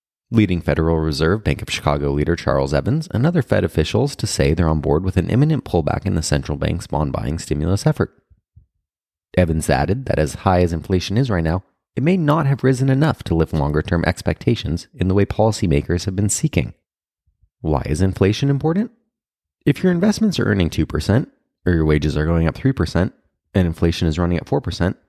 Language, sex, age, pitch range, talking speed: English, male, 30-49, 80-120 Hz, 190 wpm